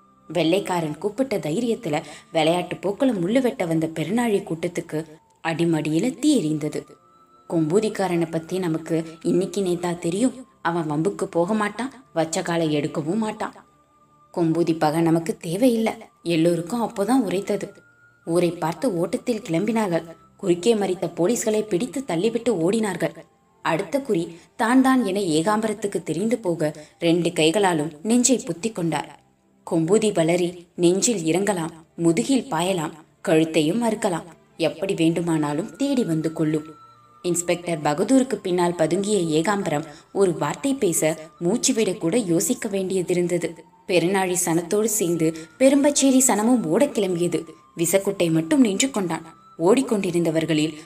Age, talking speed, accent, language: 20-39, 105 wpm, native, Tamil